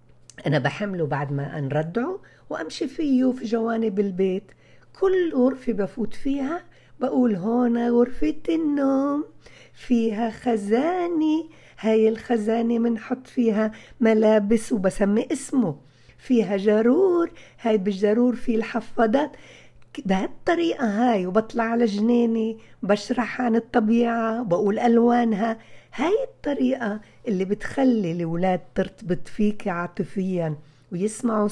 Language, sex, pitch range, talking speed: Arabic, female, 190-250 Hz, 100 wpm